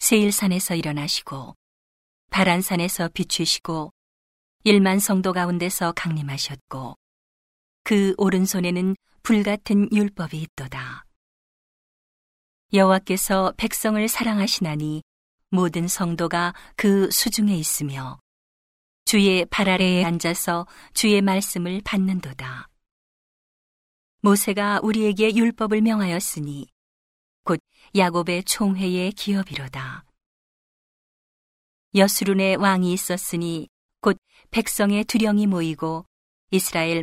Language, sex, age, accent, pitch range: Korean, female, 40-59, native, 160-205 Hz